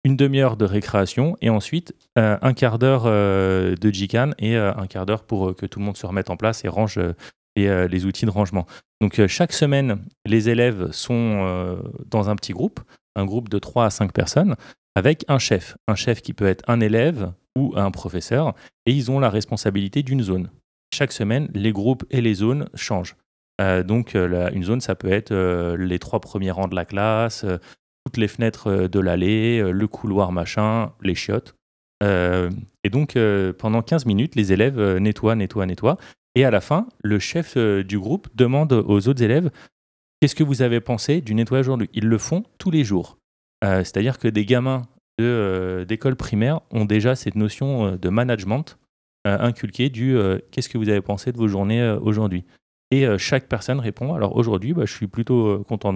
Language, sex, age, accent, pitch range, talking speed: French, male, 30-49, French, 100-130 Hz, 205 wpm